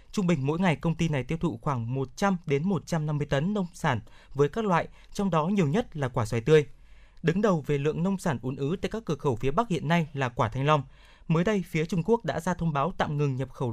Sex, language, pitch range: male, Vietnamese, 140-185 Hz